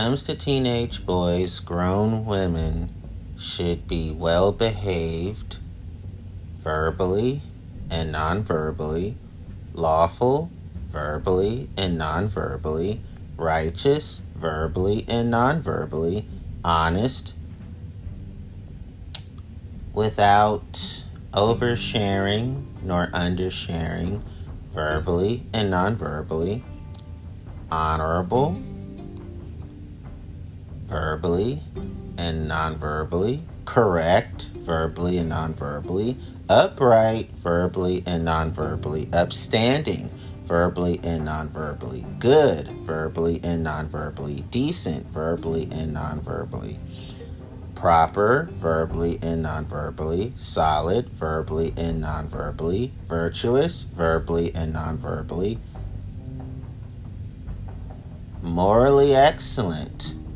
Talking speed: 75 wpm